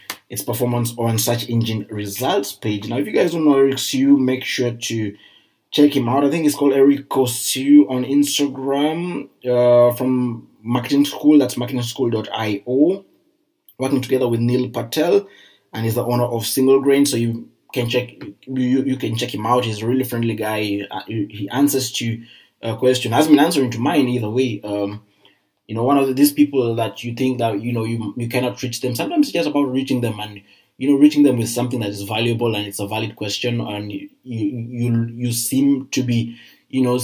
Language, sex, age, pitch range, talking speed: English, male, 20-39, 115-135 Hz, 205 wpm